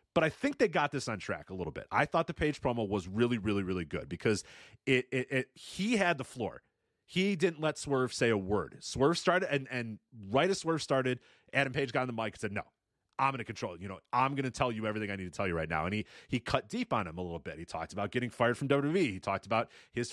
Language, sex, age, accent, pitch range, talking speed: English, male, 30-49, American, 110-145 Hz, 280 wpm